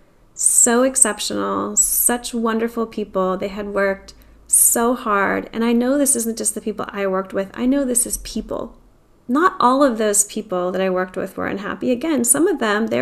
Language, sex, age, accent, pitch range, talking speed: English, female, 10-29, American, 210-250 Hz, 195 wpm